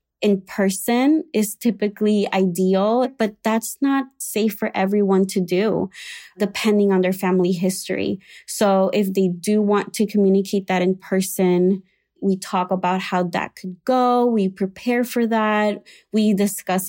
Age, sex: 20-39, female